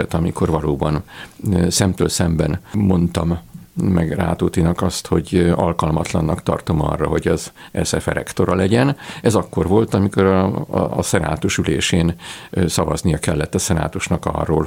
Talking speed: 125 wpm